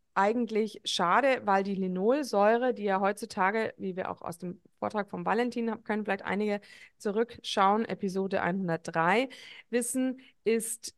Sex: female